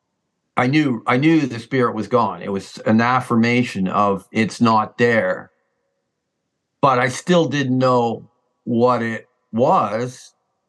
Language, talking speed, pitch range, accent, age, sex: English, 135 wpm, 120-165 Hz, American, 50-69, male